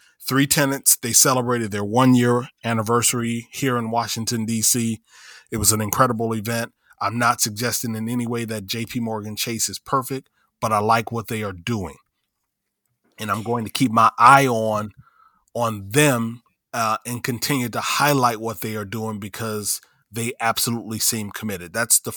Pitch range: 110-120 Hz